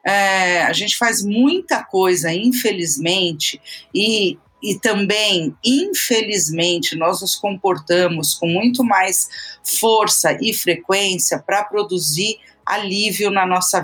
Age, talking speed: 40-59, 105 wpm